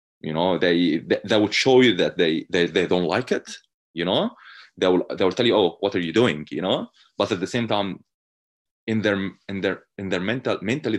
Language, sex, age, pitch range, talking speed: English, male, 20-39, 90-110 Hz, 235 wpm